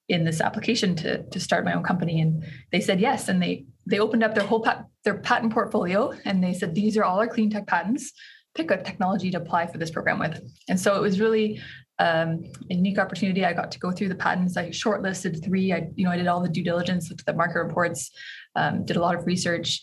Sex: female